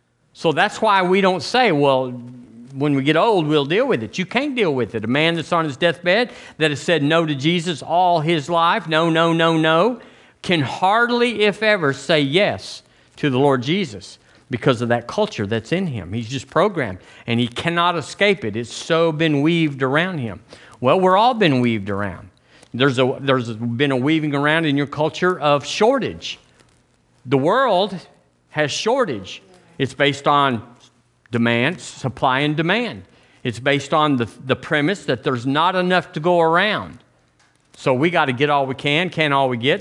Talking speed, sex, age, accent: 185 wpm, male, 50-69, American